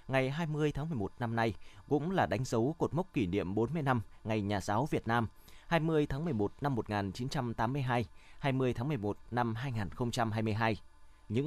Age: 20-39